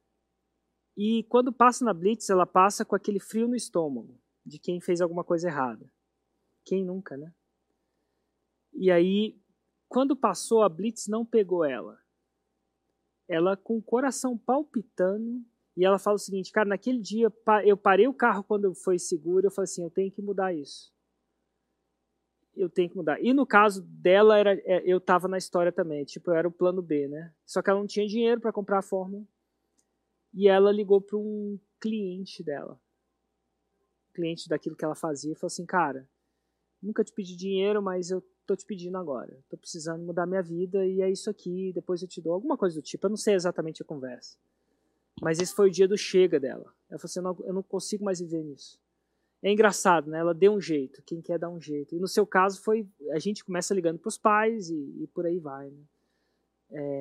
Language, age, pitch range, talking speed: Portuguese, 20-39, 170-210 Hz, 200 wpm